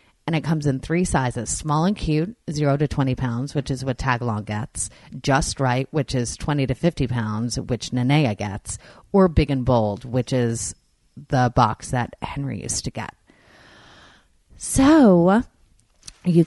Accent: American